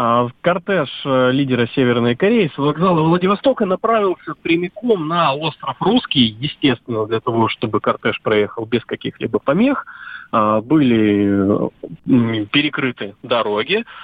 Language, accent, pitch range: Russian, native, 120-185 Hz